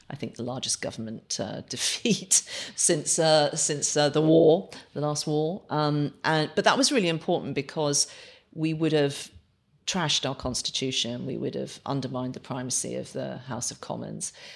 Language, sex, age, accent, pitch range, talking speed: English, female, 40-59, British, 130-150 Hz, 170 wpm